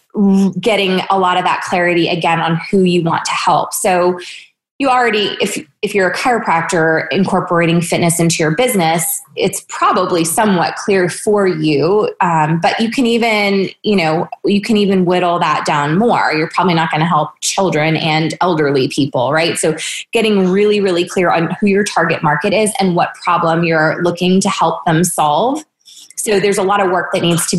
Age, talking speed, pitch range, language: 20-39, 185 wpm, 160-195 Hz, English